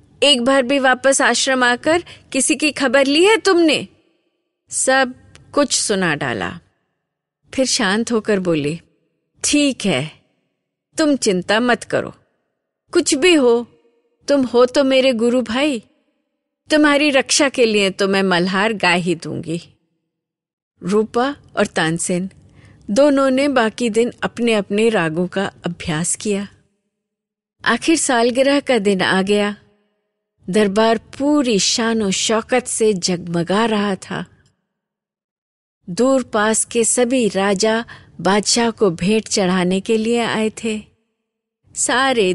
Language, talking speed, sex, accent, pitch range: Hindi, 120 wpm, female, native, 195-260 Hz